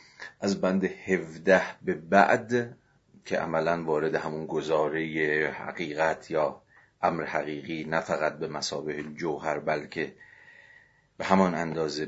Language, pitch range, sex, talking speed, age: Persian, 75-95 Hz, male, 115 wpm, 40-59